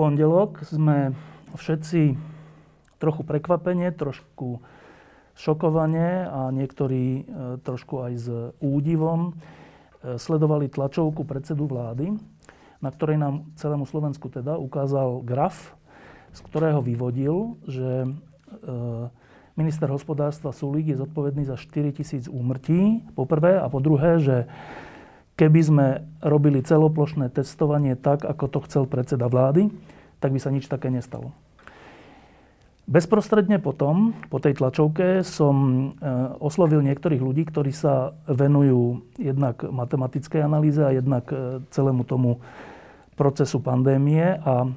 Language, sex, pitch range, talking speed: Slovak, male, 130-155 Hz, 110 wpm